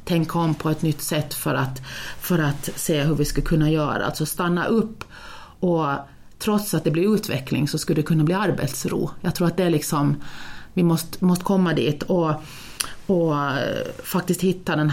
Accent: native